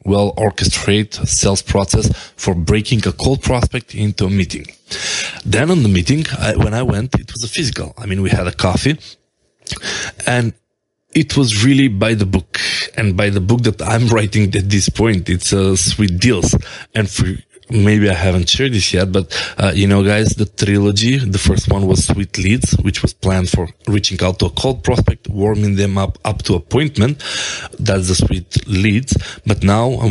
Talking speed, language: 185 wpm, English